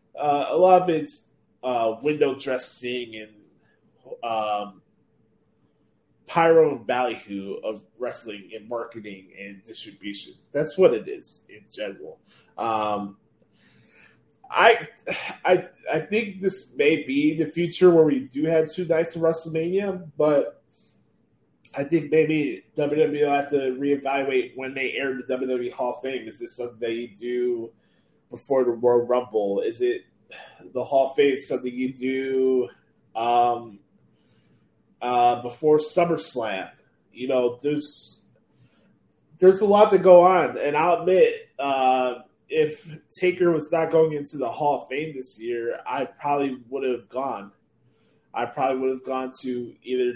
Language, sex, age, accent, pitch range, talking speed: English, male, 20-39, American, 120-165 Hz, 140 wpm